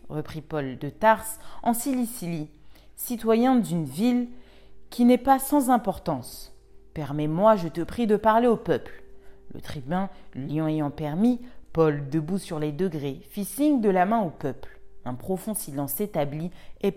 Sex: female